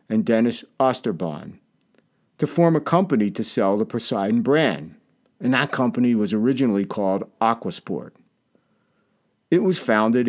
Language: English